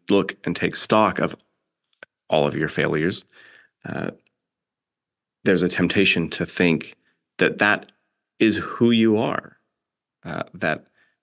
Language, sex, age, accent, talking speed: English, male, 30-49, American, 125 wpm